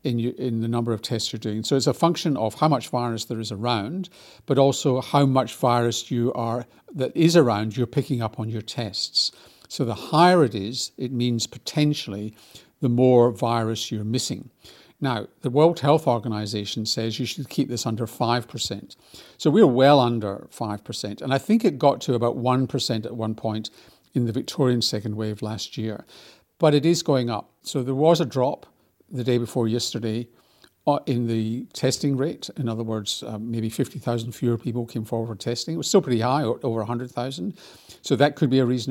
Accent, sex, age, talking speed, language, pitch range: British, male, 50-69, 195 wpm, English, 115-140 Hz